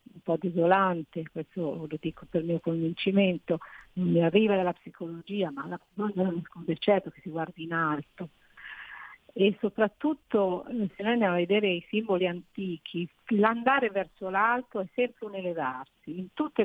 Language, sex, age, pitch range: Italian, female, 50-69, 170-215 Hz